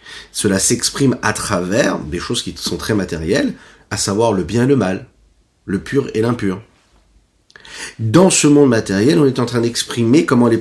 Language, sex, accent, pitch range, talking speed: French, male, French, 95-125 Hz, 180 wpm